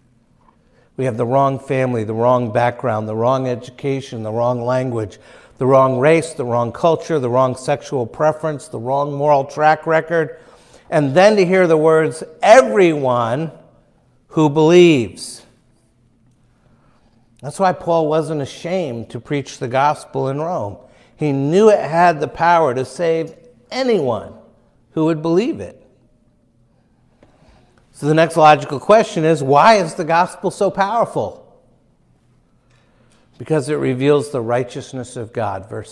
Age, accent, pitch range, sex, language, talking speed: 60-79, American, 120-160 Hz, male, English, 135 wpm